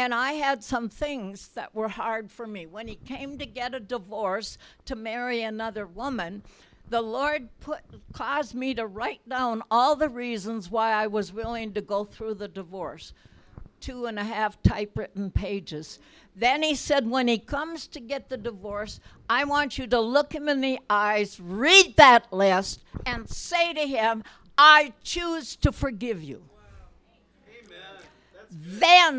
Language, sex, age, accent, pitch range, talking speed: English, female, 60-79, American, 220-290 Hz, 160 wpm